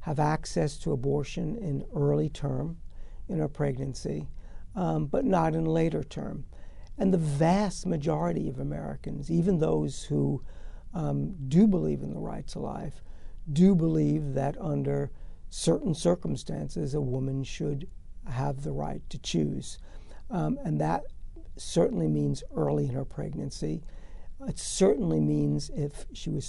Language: English